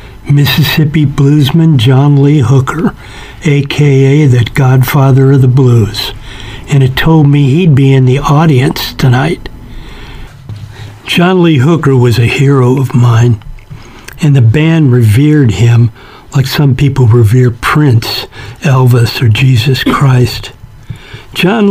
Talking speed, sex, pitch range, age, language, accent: 120 wpm, male, 120-140 Hz, 60-79, English, American